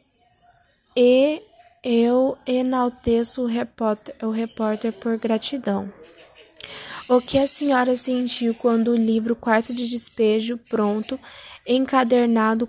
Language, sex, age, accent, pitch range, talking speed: Portuguese, female, 10-29, Brazilian, 225-250 Hz, 100 wpm